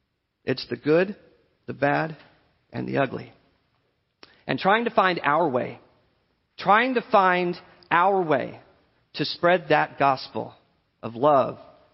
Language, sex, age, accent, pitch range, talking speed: English, male, 40-59, American, 185-250 Hz, 125 wpm